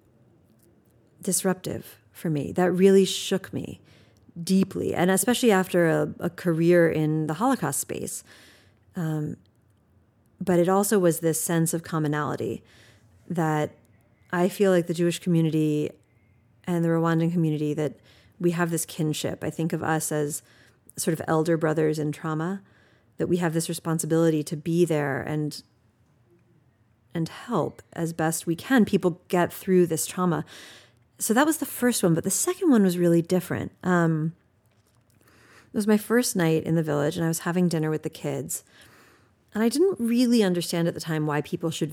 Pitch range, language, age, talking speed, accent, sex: 150-185 Hz, English, 30-49, 165 wpm, American, female